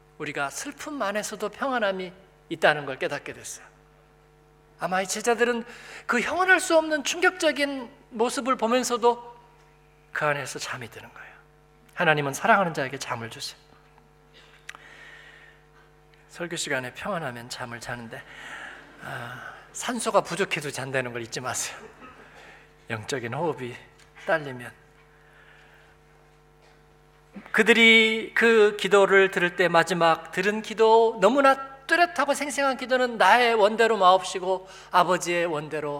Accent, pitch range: native, 175-250 Hz